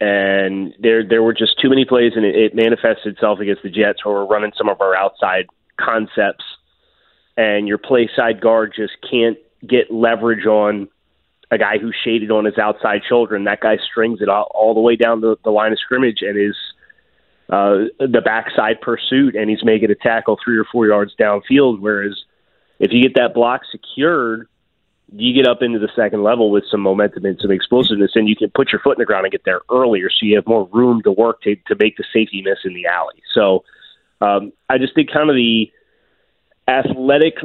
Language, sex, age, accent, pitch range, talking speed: English, male, 30-49, American, 105-125 Hz, 210 wpm